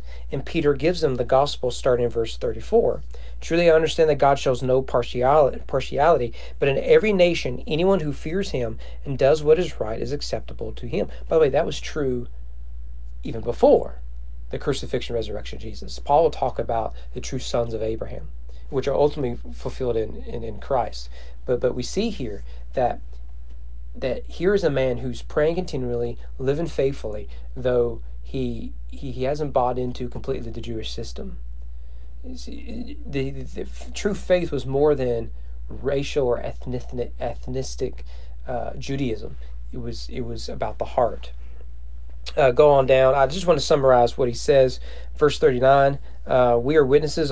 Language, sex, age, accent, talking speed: English, male, 40-59, American, 160 wpm